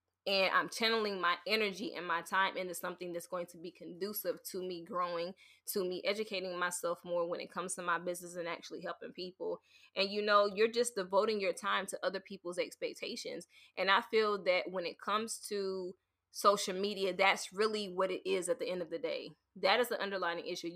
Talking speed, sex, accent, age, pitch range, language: 205 wpm, female, American, 20-39, 185-245 Hz, English